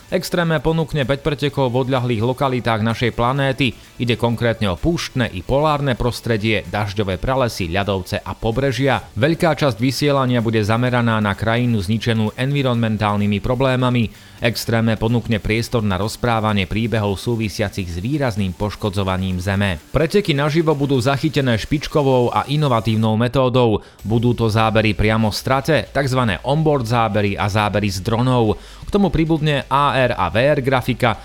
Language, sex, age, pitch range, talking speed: Slovak, male, 30-49, 110-135 Hz, 130 wpm